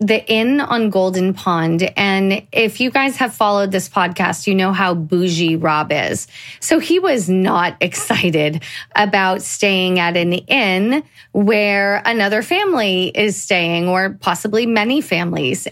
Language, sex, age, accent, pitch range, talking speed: English, female, 20-39, American, 185-230 Hz, 145 wpm